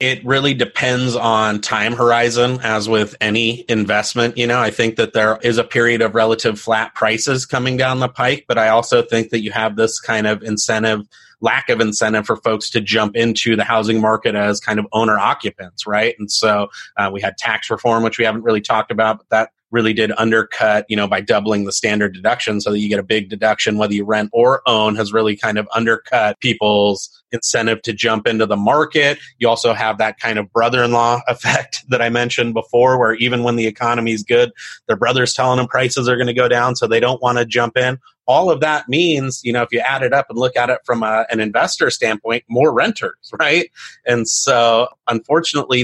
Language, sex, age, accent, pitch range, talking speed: English, male, 30-49, American, 110-125 Hz, 220 wpm